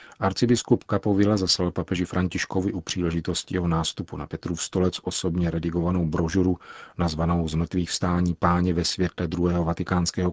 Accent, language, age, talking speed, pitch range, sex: native, Czech, 40-59, 135 wpm, 85-95 Hz, male